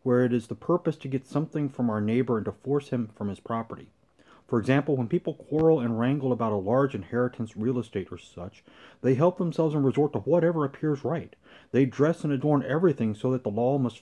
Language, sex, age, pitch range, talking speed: English, male, 30-49, 115-150 Hz, 225 wpm